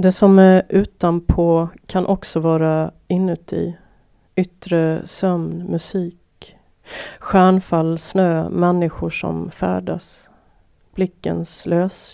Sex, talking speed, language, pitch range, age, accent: female, 85 wpm, Swedish, 160-180 Hz, 30-49, native